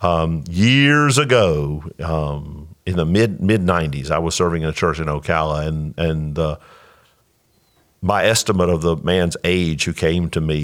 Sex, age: male, 50-69